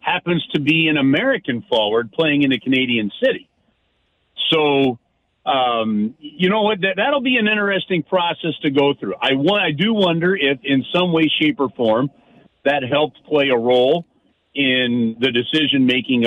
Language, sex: English, male